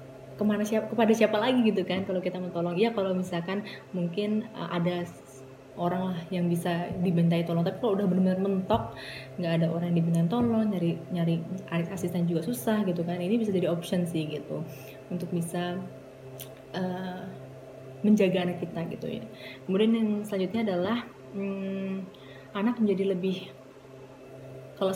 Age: 20-39